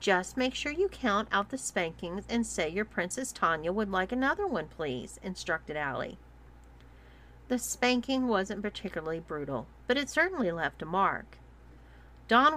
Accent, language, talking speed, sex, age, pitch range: American, English, 155 wpm, female, 40-59, 165-255 Hz